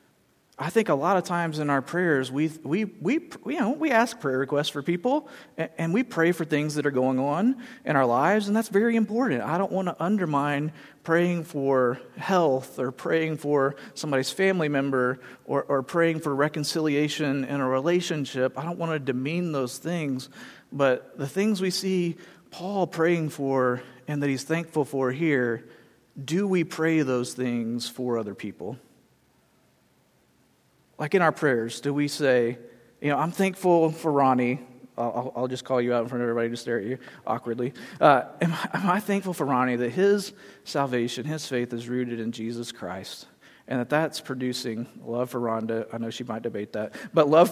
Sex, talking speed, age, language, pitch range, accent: male, 185 wpm, 40-59, English, 125-170 Hz, American